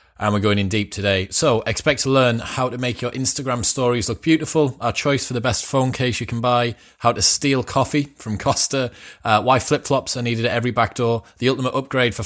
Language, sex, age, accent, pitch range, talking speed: English, male, 20-39, British, 100-120 Hz, 230 wpm